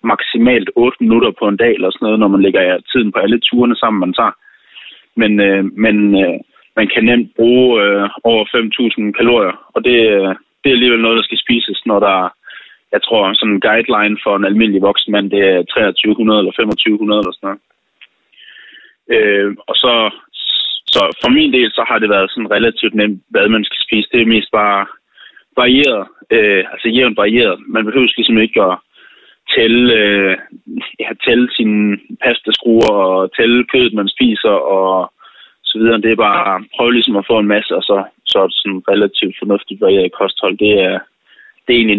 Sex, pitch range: male, 100-120 Hz